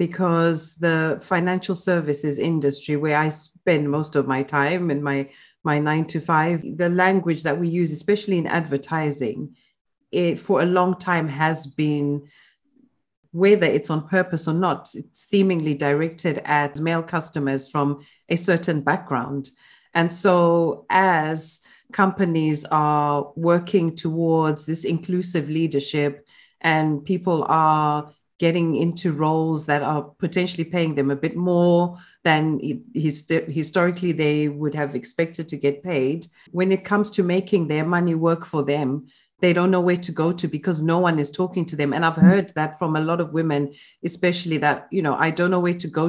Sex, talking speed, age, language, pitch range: female, 160 wpm, 30-49, English, 150-175 Hz